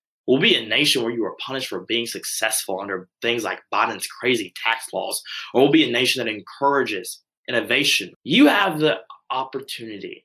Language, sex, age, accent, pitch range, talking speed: English, male, 20-39, American, 115-175 Hz, 175 wpm